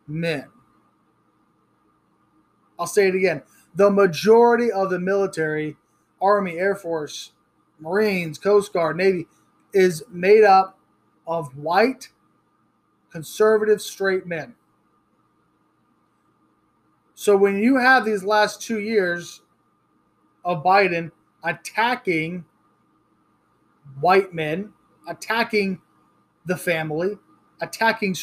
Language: English